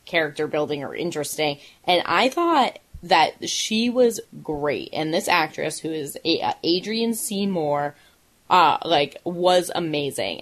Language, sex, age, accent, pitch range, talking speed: English, female, 20-39, American, 155-210 Hz, 130 wpm